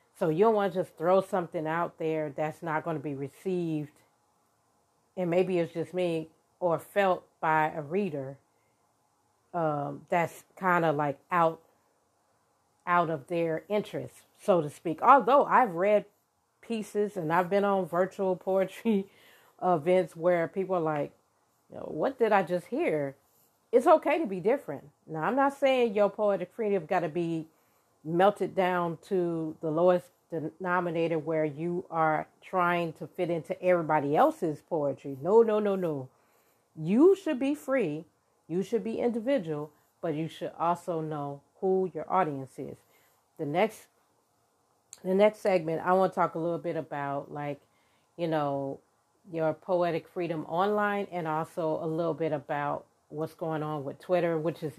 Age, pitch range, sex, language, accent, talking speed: 40-59, 155-190 Hz, female, English, American, 160 wpm